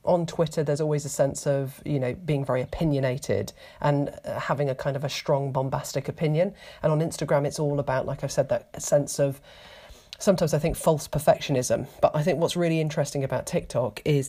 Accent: British